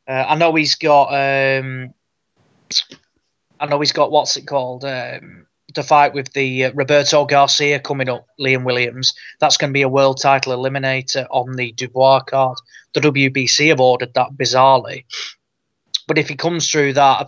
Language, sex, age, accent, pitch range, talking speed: English, male, 20-39, British, 130-150 Hz, 175 wpm